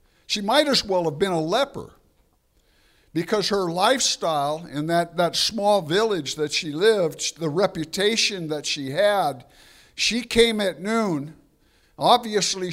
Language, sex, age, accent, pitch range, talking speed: English, male, 60-79, American, 160-215 Hz, 135 wpm